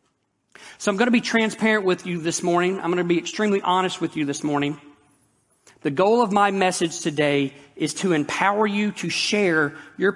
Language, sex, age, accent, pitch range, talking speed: English, male, 40-59, American, 150-185 Hz, 195 wpm